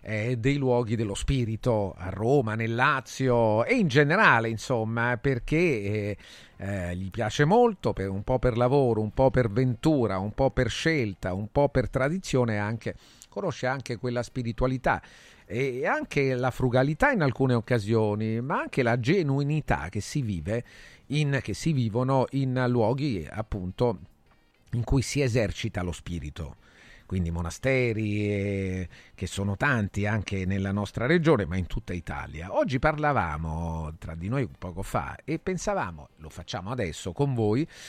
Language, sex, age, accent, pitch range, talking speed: Italian, male, 40-59, native, 100-135 Hz, 150 wpm